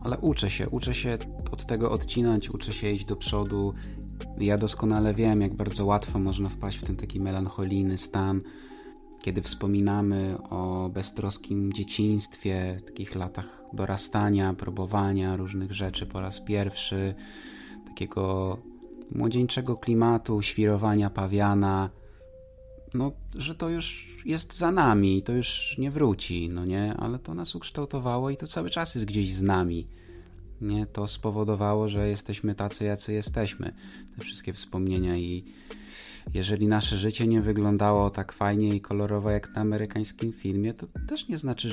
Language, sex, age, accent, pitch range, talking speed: Polish, male, 20-39, native, 95-110 Hz, 145 wpm